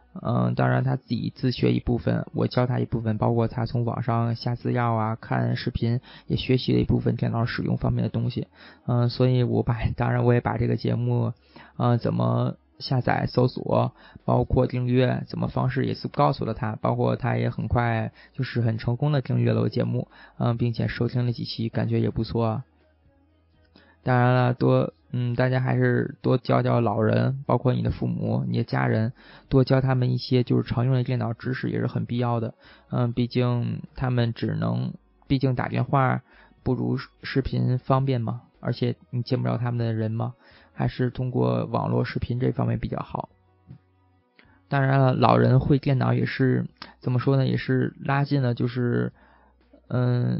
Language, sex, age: Chinese, male, 20-39